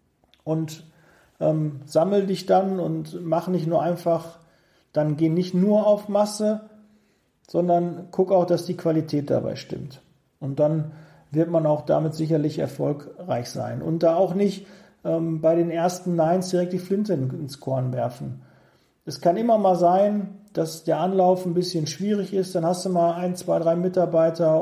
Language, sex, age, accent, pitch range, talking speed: German, male, 40-59, German, 155-185 Hz, 165 wpm